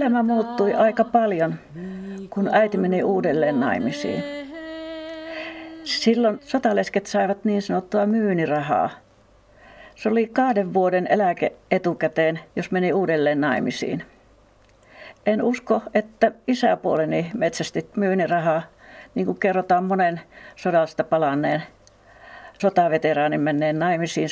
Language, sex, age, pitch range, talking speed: Finnish, female, 60-79, 175-220 Hz, 95 wpm